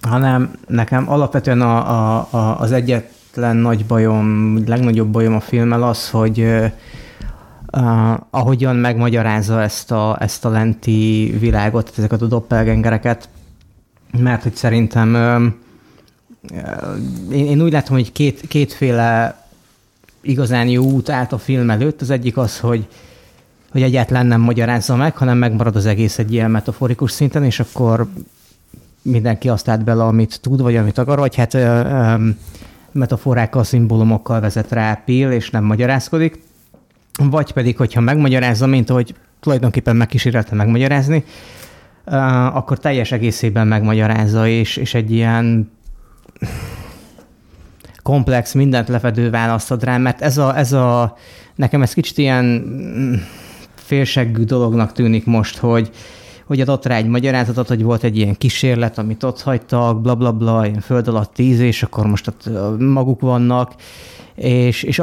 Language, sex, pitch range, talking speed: Hungarian, male, 115-130 Hz, 135 wpm